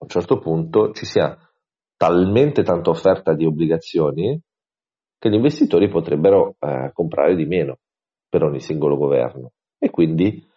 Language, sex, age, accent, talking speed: Italian, male, 40-59, native, 140 wpm